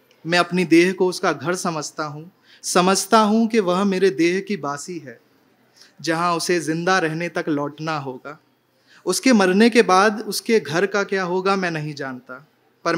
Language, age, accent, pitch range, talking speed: Hindi, 30-49, native, 150-185 Hz, 170 wpm